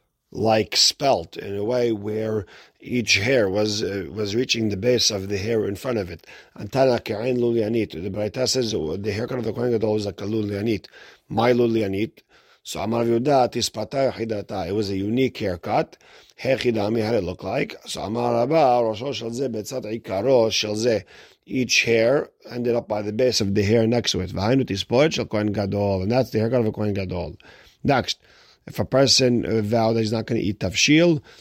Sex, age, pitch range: male, 50-69, 105-125 Hz